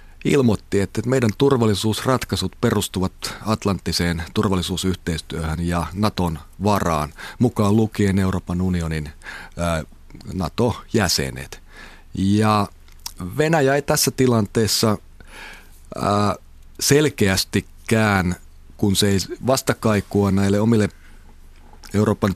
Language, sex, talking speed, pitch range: Finnish, male, 75 wpm, 90-110 Hz